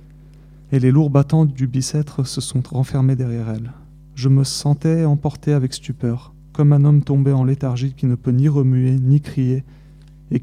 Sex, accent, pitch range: male, French, 130-150 Hz